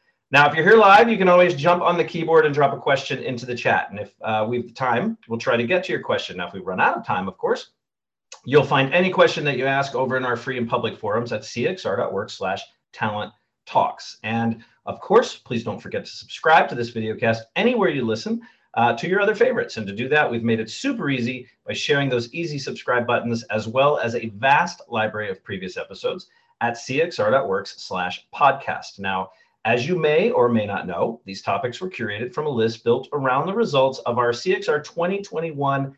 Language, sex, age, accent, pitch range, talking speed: English, male, 40-59, American, 120-165 Hz, 220 wpm